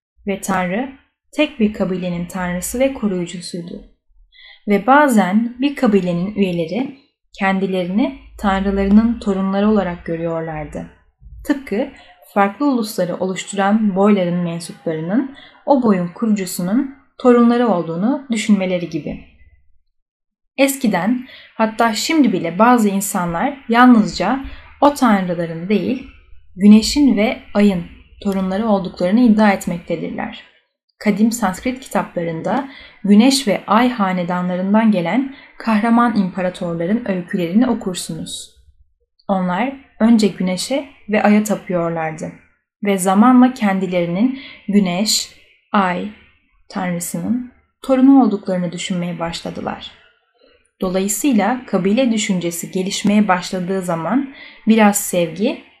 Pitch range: 185-240 Hz